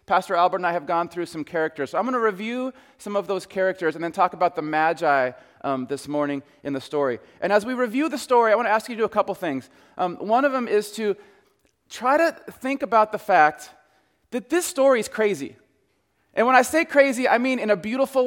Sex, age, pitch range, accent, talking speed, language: male, 30-49, 185-235 Hz, American, 240 wpm, English